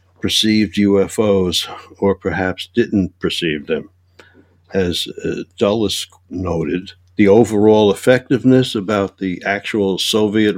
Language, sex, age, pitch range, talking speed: English, male, 60-79, 90-105 Hz, 100 wpm